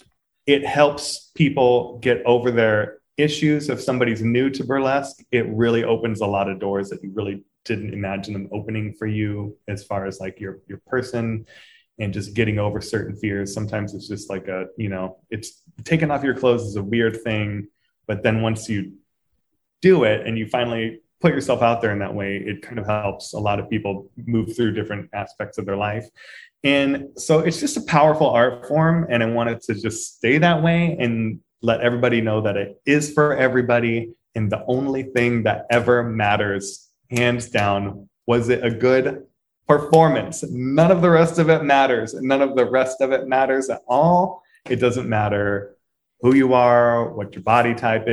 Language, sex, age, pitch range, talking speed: English, male, 20-39, 105-130 Hz, 190 wpm